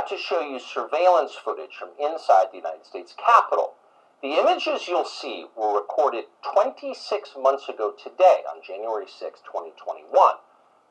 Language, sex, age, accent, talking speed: English, male, 50-69, American, 140 wpm